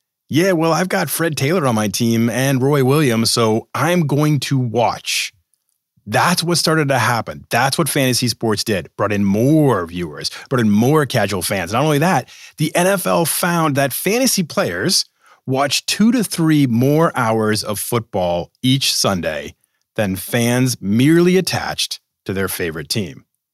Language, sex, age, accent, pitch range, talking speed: English, male, 30-49, American, 110-165 Hz, 160 wpm